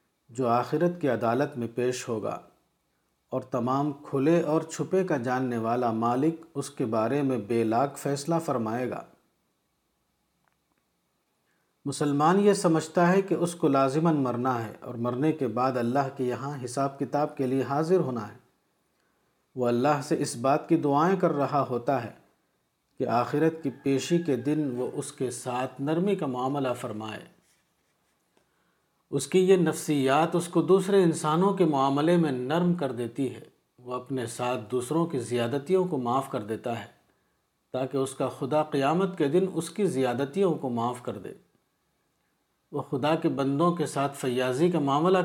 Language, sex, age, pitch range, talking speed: Urdu, male, 50-69, 125-160 Hz, 165 wpm